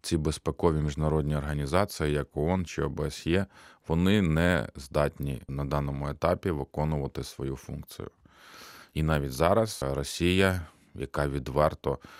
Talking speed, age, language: 115 wpm, 30-49, Ukrainian